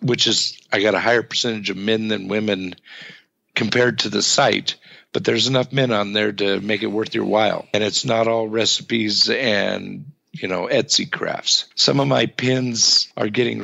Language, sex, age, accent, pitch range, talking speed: English, male, 50-69, American, 105-130 Hz, 190 wpm